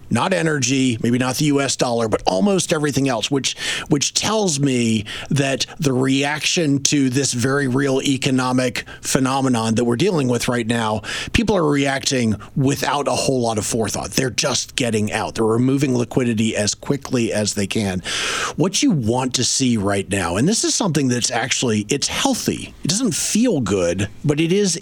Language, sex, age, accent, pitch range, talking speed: English, male, 40-59, American, 120-150 Hz, 175 wpm